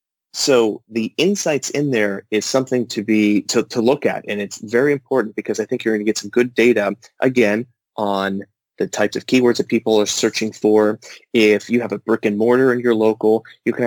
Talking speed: 210 wpm